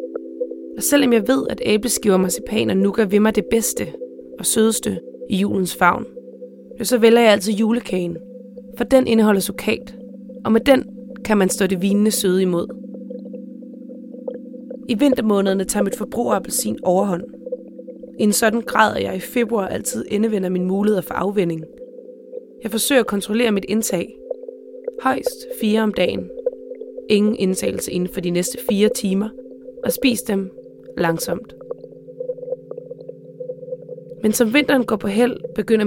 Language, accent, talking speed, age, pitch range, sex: Danish, native, 145 wpm, 20-39, 195-255 Hz, female